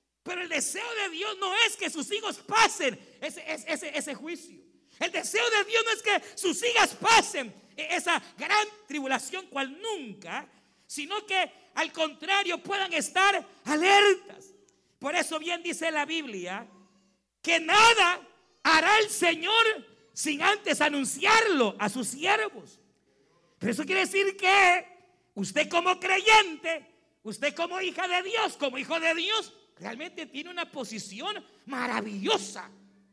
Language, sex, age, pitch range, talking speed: Spanish, male, 50-69, 240-385 Hz, 140 wpm